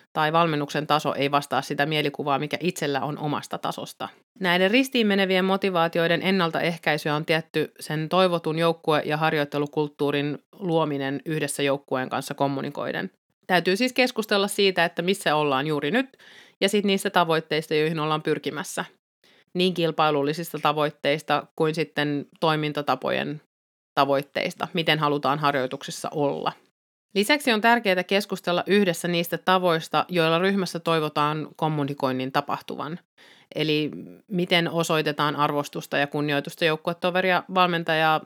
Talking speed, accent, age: 120 wpm, native, 30-49